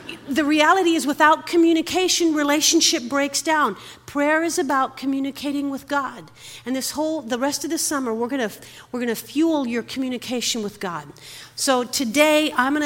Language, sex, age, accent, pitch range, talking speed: English, female, 50-69, American, 195-265 Hz, 175 wpm